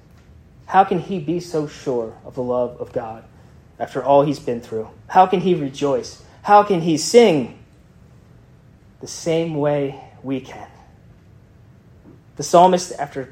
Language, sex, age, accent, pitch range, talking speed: English, male, 30-49, American, 130-165 Hz, 145 wpm